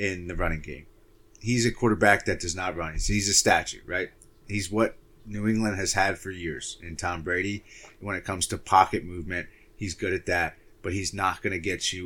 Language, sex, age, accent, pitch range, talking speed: English, male, 30-49, American, 90-110 Hz, 215 wpm